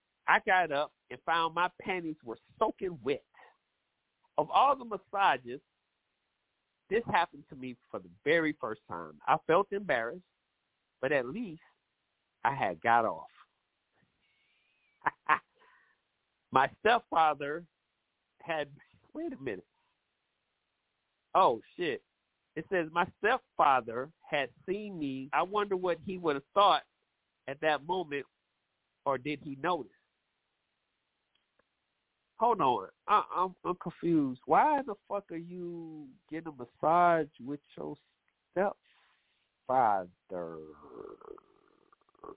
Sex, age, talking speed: male, 40-59, 110 wpm